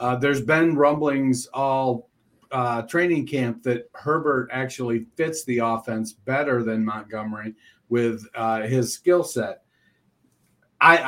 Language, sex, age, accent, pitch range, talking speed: English, male, 50-69, American, 115-145 Hz, 125 wpm